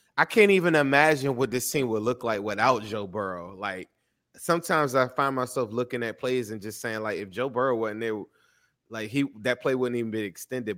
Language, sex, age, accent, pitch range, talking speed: English, male, 20-39, American, 110-140 Hz, 210 wpm